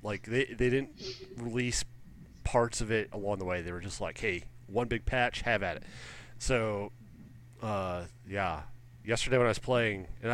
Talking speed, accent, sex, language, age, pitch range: 180 wpm, American, male, English, 30-49, 95-120 Hz